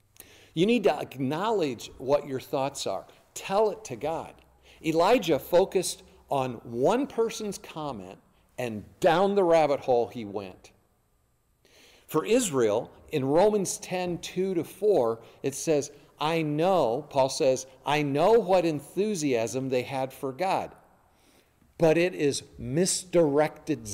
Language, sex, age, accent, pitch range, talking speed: English, male, 50-69, American, 130-185 Hz, 125 wpm